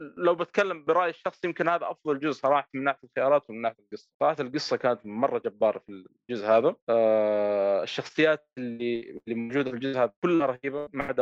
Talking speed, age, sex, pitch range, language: 165 wpm, 30-49, male, 125-200 Hz, Arabic